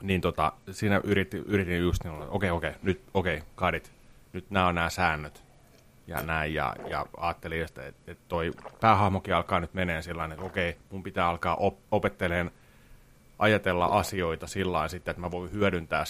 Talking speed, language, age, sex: 185 wpm, Finnish, 30-49, male